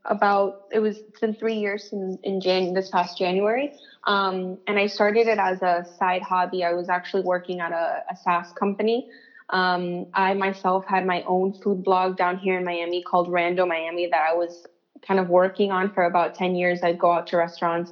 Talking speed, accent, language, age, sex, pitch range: 210 wpm, American, English, 20-39, female, 175-195 Hz